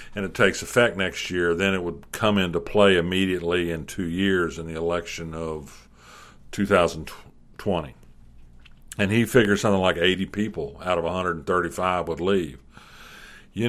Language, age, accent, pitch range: English, 50-69, American, 85-105 Hz